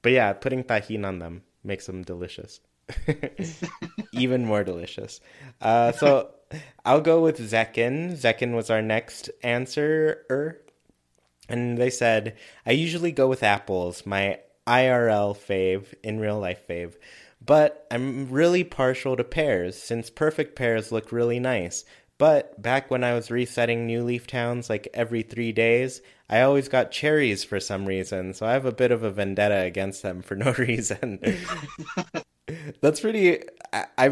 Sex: male